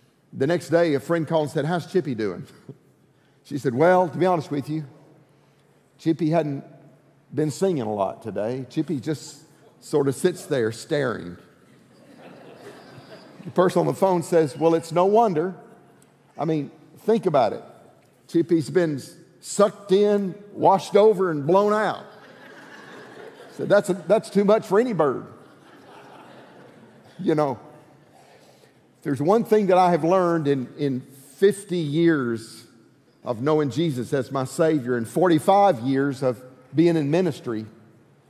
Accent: American